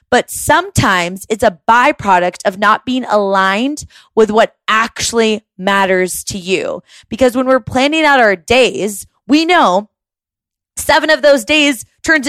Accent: American